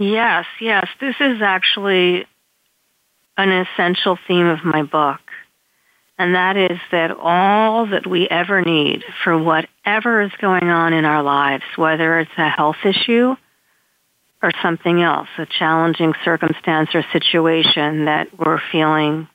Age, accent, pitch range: 50-69, American, 160-190 Hz